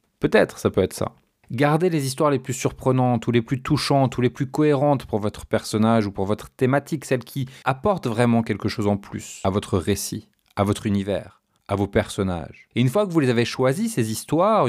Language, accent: French, French